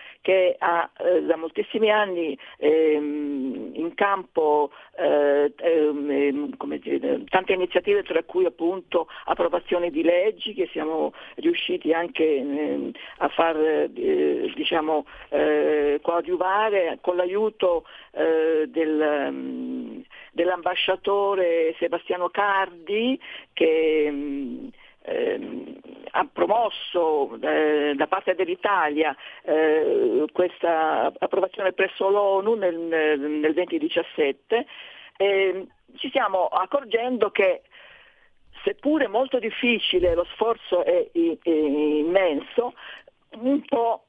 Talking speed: 95 wpm